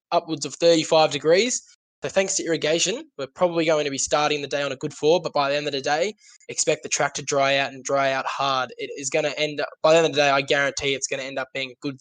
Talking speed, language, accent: 295 wpm, English, Australian